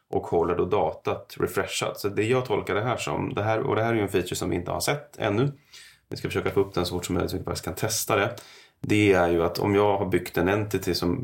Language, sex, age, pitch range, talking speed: English, male, 20-39, 85-100 Hz, 285 wpm